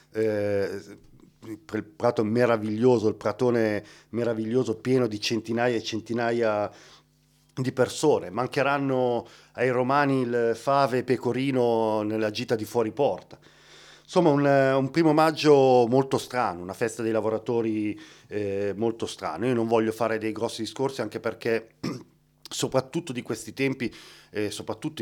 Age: 40-59